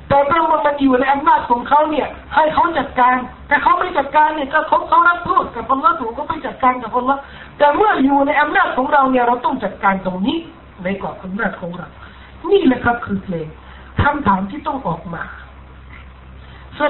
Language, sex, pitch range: Thai, male, 195-280 Hz